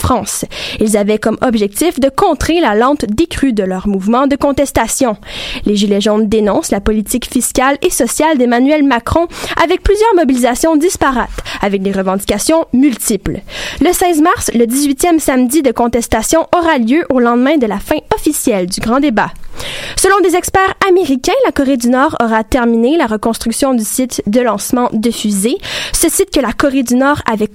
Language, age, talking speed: French, 10-29, 170 wpm